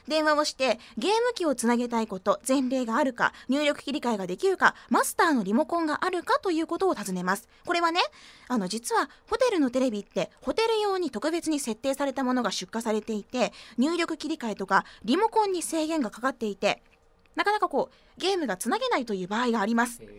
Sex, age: female, 20-39